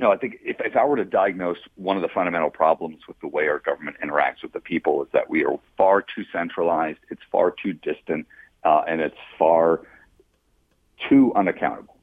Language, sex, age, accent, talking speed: English, male, 50-69, American, 200 wpm